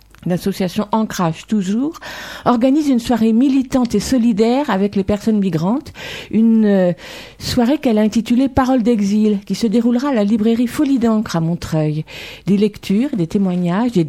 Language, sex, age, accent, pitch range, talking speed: French, female, 50-69, French, 190-240 Hz, 155 wpm